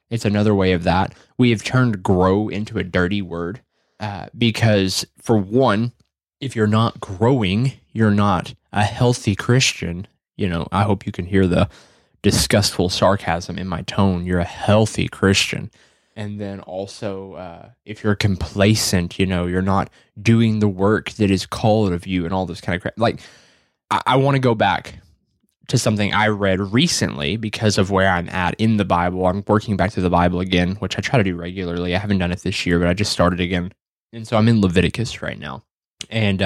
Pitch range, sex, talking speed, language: 95-110 Hz, male, 195 wpm, English